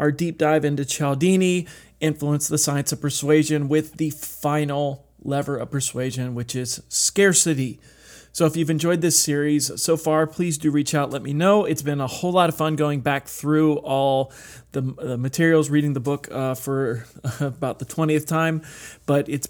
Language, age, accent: English, 30-49, American